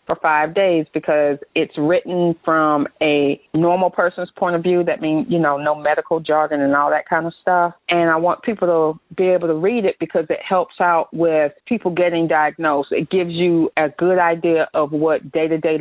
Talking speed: 200 wpm